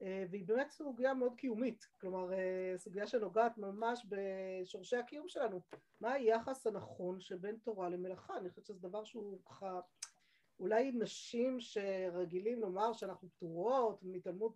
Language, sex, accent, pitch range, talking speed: Hebrew, female, native, 195-235 Hz, 130 wpm